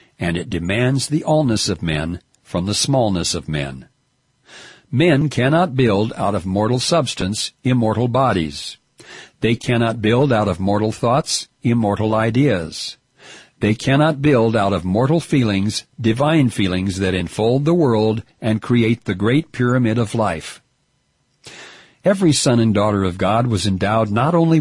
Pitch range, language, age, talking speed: 100-140 Hz, English, 60-79, 145 wpm